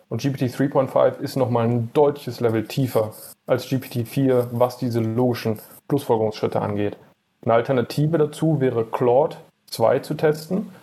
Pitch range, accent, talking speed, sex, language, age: 115-135 Hz, German, 125 wpm, male, German, 30-49